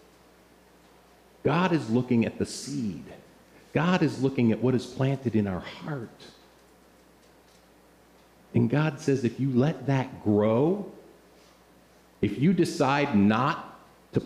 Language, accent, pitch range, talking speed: English, American, 110-175 Hz, 120 wpm